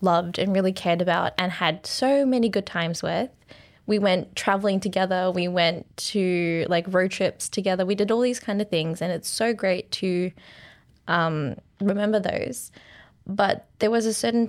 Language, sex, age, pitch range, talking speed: English, female, 20-39, 185-210 Hz, 180 wpm